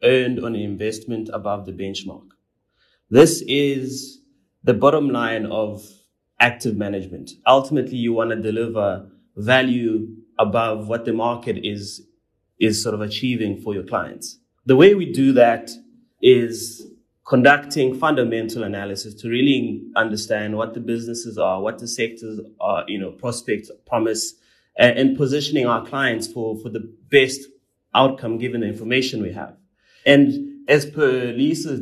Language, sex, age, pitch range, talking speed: English, male, 30-49, 110-130 Hz, 140 wpm